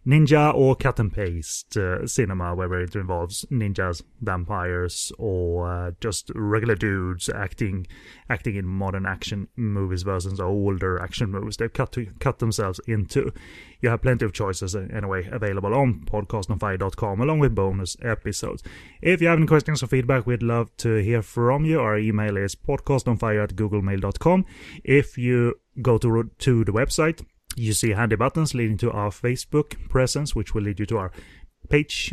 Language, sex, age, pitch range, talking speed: English, male, 30-49, 100-125 Hz, 170 wpm